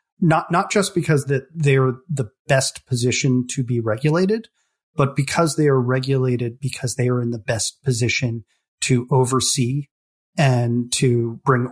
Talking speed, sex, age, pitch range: 150 wpm, male, 30-49, 125-145 Hz